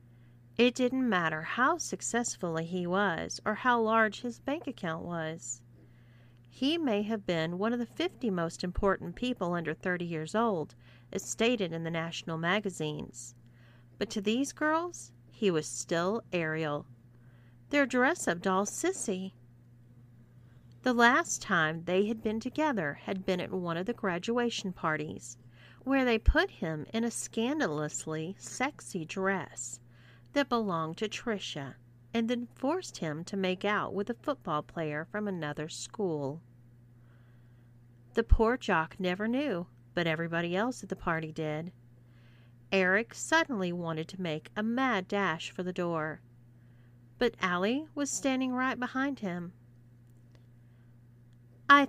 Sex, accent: female, American